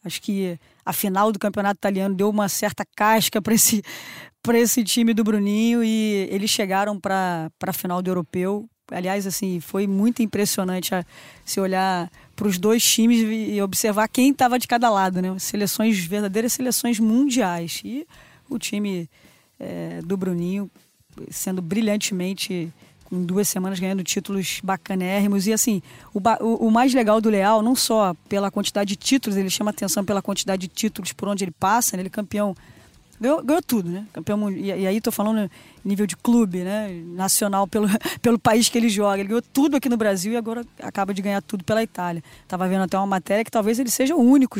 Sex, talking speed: female, 185 wpm